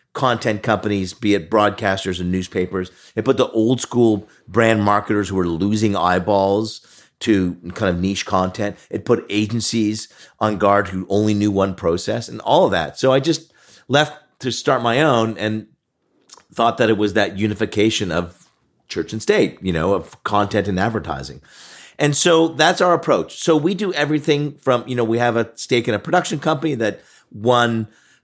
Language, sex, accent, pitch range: English, male, American, 95-120 Hz